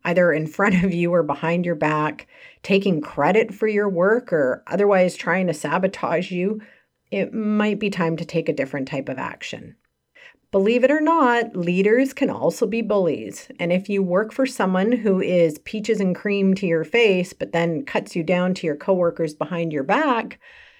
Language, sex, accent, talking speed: English, female, American, 190 wpm